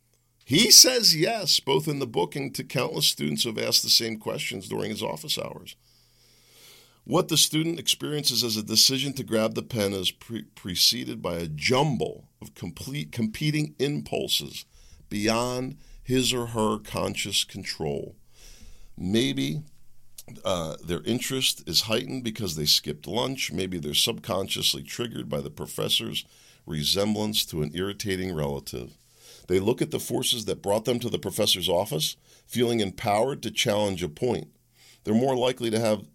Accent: American